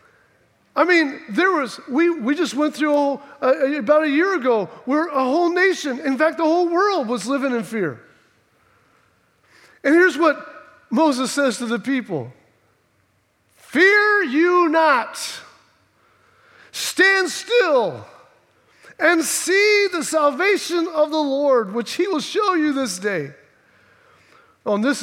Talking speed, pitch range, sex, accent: 140 wpm, 240-340 Hz, male, American